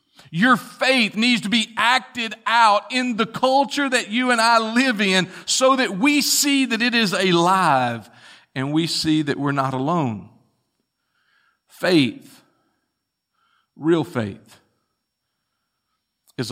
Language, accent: English, American